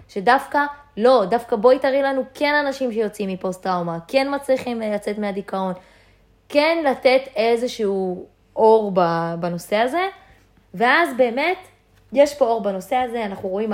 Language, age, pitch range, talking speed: Hebrew, 20-39, 190-240 Hz, 125 wpm